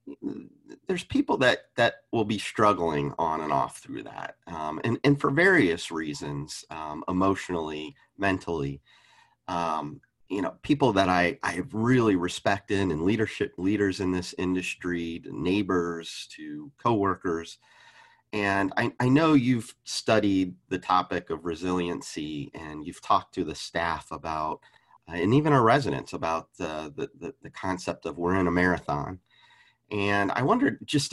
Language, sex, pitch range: English, male, 85-110 Hz